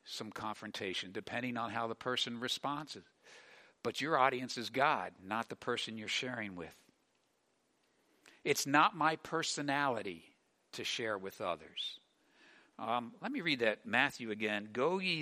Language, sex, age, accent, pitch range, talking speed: English, male, 60-79, American, 120-190 Hz, 140 wpm